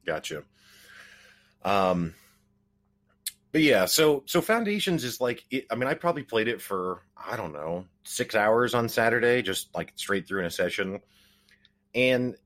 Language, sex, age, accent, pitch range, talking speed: English, male, 30-49, American, 85-110 Hz, 155 wpm